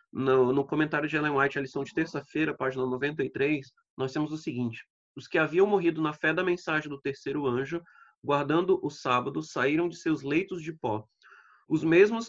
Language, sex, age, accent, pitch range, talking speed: Portuguese, male, 30-49, Brazilian, 145-180 Hz, 185 wpm